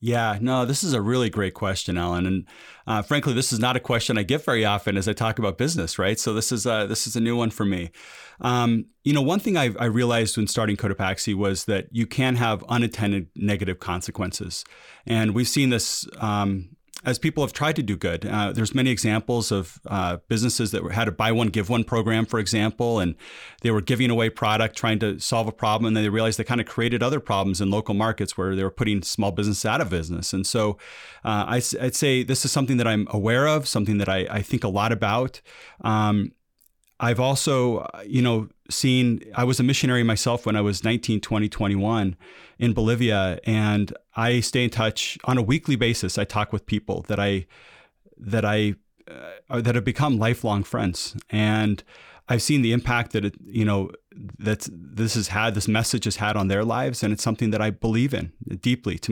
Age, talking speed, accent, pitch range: 30-49, 210 wpm, American, 105-120 Hz